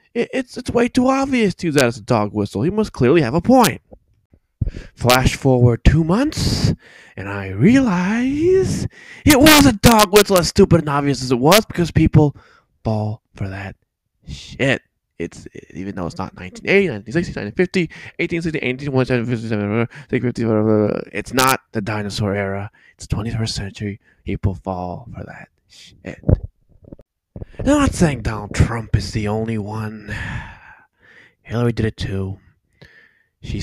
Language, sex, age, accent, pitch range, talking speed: English, male, 20-39, American, 95-150 Hz, 145 wpm